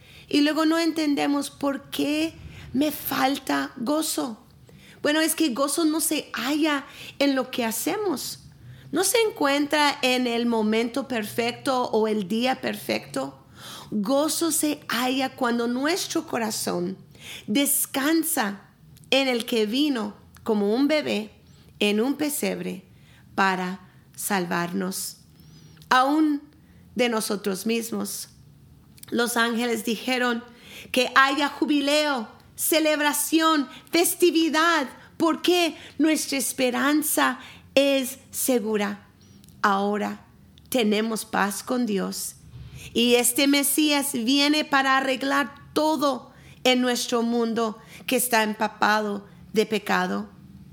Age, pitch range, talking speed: 40-59, 220-300 Hz, 105 wpm